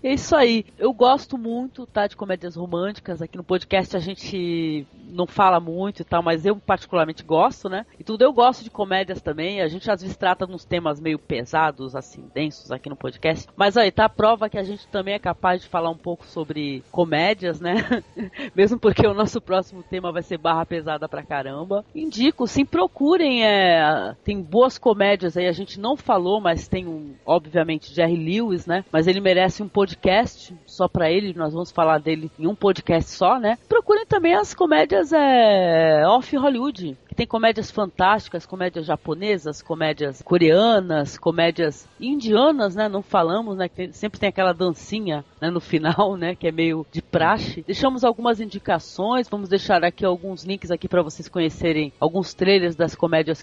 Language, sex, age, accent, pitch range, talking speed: Portuguese, female, 40-59, Brazilian, 165-210 Hz, 185 wpm